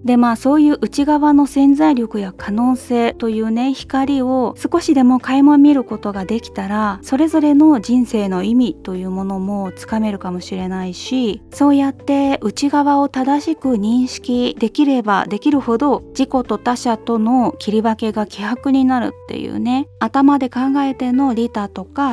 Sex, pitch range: female, 205-265 Hz